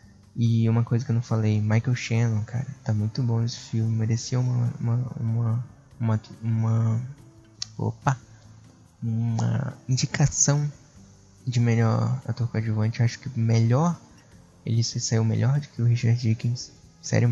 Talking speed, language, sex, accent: 145 wpm, Portuguese, male, Brazilian